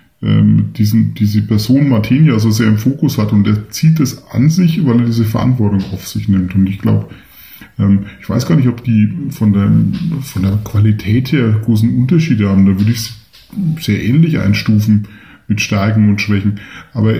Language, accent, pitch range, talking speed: German, German, 105-125 Hz, 185 wpm